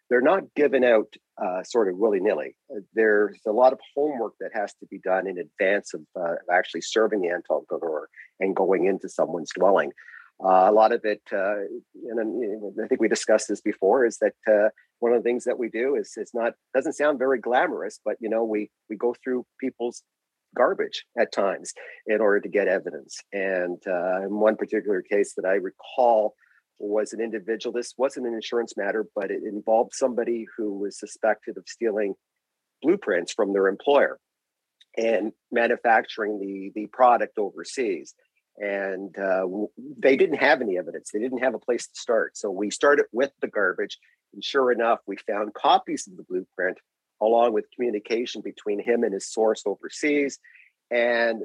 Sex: male